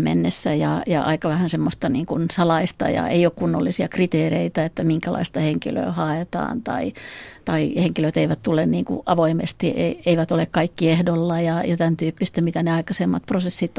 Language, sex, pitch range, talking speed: Finnish, female, 160-180 Hz, 165 wpm